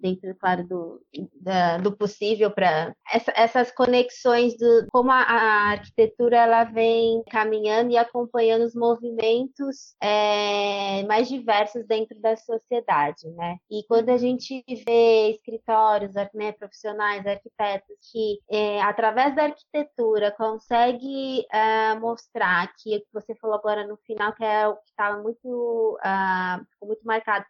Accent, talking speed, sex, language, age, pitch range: Brazilian, 145 wpm, female, Portuguese, 20-39, 210-240 Hz